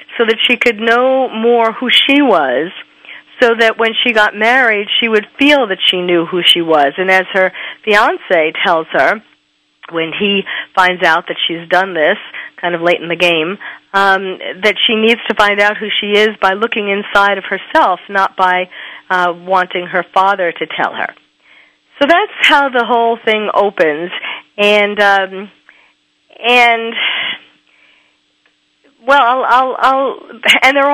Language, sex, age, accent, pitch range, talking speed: English, female, 40-59, American, 195-245 Hz, 165 wpm